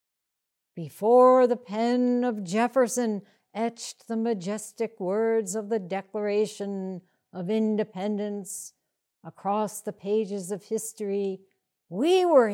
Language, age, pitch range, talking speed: English, 60-79, 185-245 Hz, 100 wpm